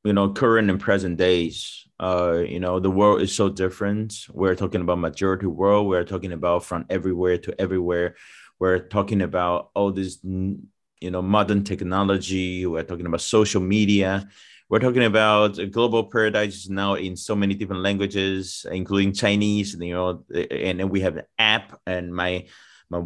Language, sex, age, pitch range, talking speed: English, male, 30-49, 95-105 Hz, 170 wpm